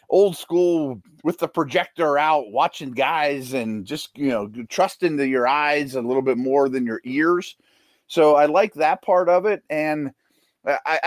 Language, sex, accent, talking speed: English, male, American, 175 wpm